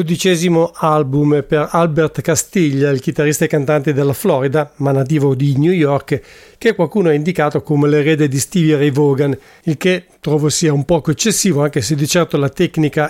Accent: Italian